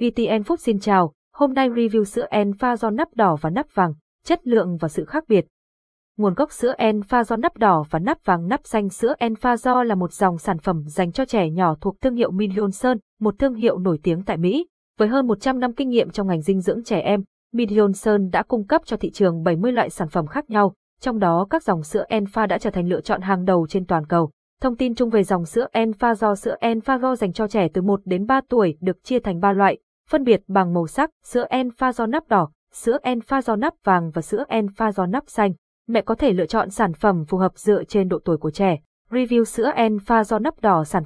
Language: Vietnamese